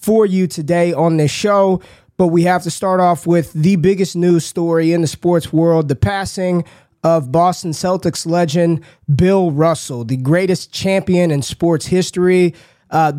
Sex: male